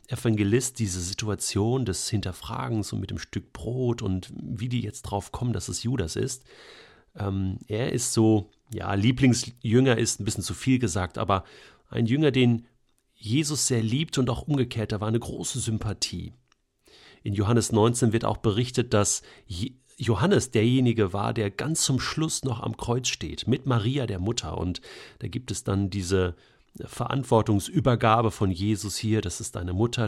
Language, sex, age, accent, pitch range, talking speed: German, male, 40-59, German, 100-125 Hz, 165 wpm